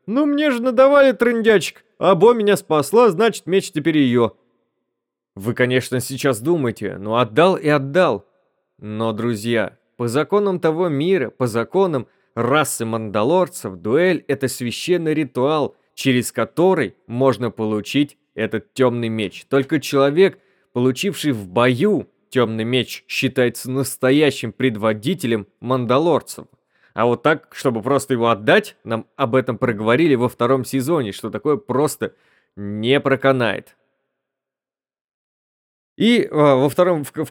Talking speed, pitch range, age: 120 wpm, 115-155 Hz, 20-39